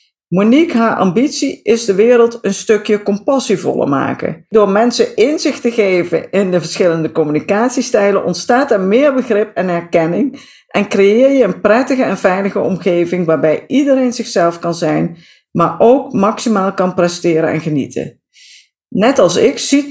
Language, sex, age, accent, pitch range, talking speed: Dutch, female, 50-69, Dutch, 180-240 Hz, 150 wpm